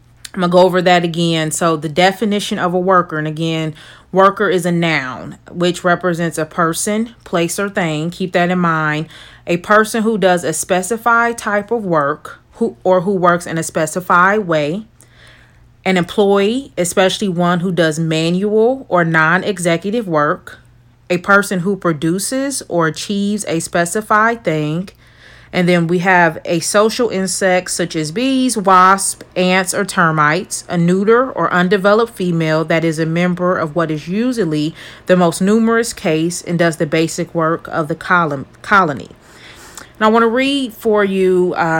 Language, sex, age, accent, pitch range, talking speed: English, female, 30-49, American, 165-205 Hz, 160 wpm